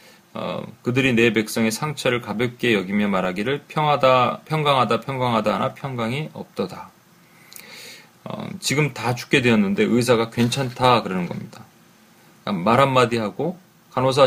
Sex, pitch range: male, 115-145 Hz